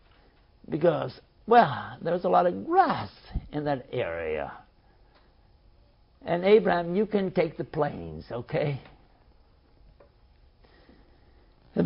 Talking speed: 95 wpm